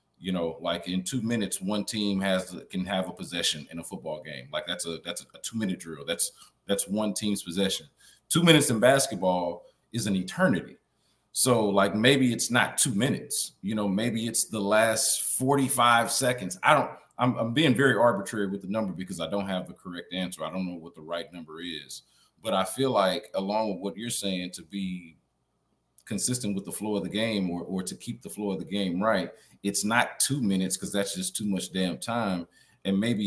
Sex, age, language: male, 40-59, English